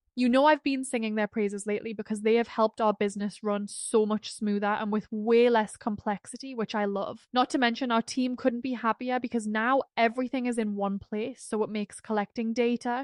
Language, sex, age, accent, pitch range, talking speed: English, female, 10-29, British, 210-250 Hz, 210 wpm